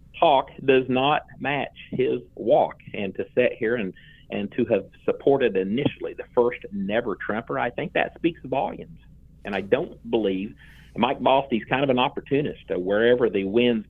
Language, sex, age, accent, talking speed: English, male, 50-69, American, 170 wpm